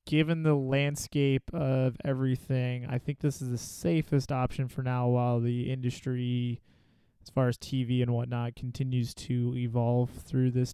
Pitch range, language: 120-140 Hz, English